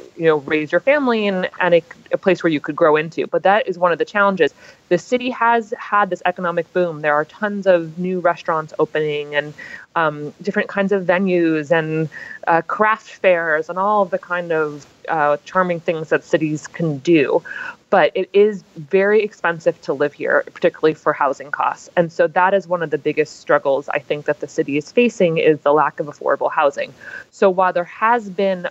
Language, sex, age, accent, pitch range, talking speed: English, female, 20-39, American, 155-190 Hz, 205 wpm